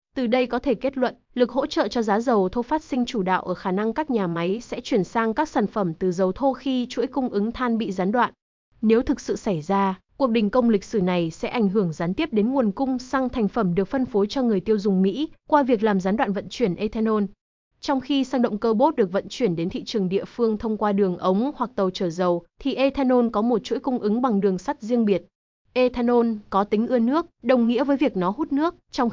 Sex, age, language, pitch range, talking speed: female, 20-39, Vietnamese, 195-250 Hz, 260 wpm